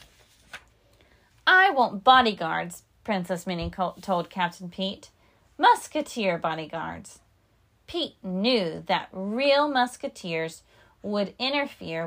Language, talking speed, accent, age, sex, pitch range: English, 85 wpm, American, 30-49, female, 205-340 Hz